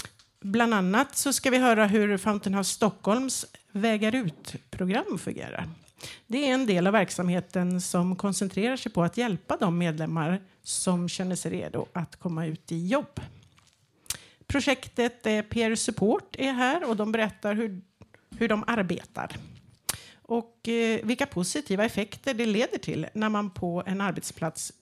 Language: Swedish